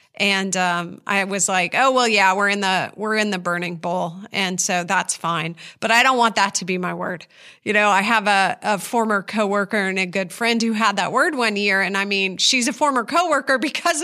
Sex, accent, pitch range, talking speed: female, American, 200-265 Hz, 235 wpm